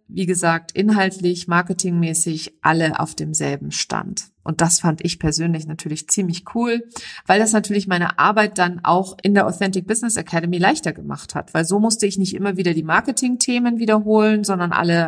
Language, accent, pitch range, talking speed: German, German, 175-210 Hz, 170 wpm